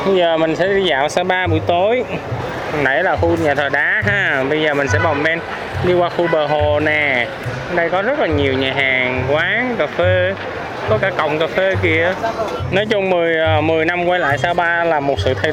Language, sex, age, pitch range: Vietnamese, male, 20-39, 140-175 Hz